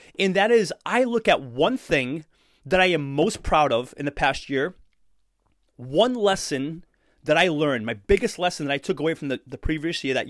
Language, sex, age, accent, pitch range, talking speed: English, male, 30-49, American, 150-215 Hz, 210 wpm